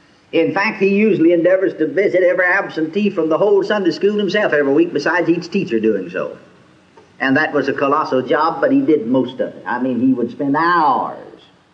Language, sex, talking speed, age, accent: English, male, 205 wpm, 50-69, American